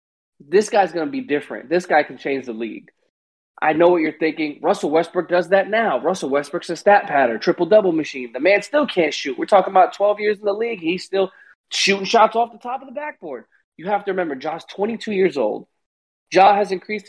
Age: 30-49